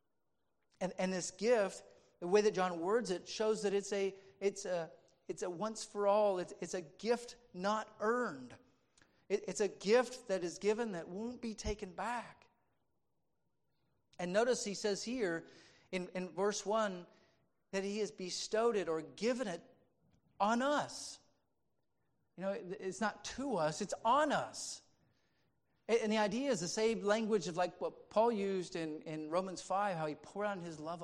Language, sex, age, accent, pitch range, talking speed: English, male, 50-69, American, 175-220 Hz, 170 wpm